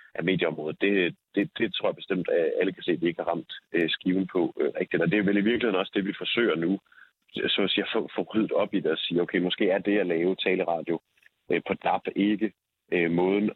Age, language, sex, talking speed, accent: 30-49, Danish, male, 240 wpm, native